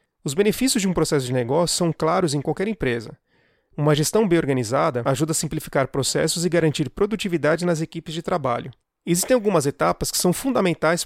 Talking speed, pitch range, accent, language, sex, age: 180 wpm, 150-185 Hz, Brazilian, Portuguese, male, 30-49